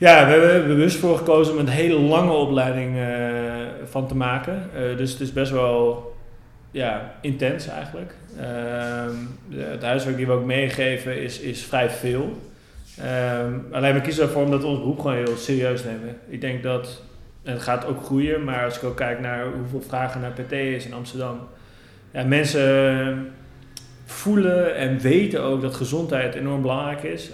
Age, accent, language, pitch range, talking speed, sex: 30-49, Dutch, Dutch, 120-135 Hz, 175 wpm, male